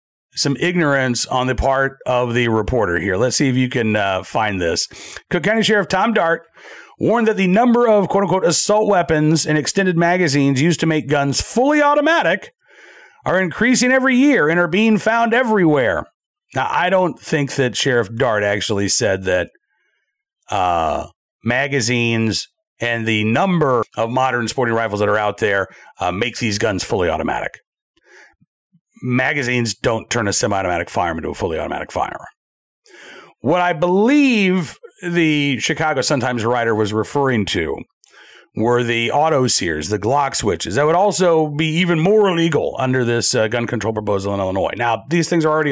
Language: English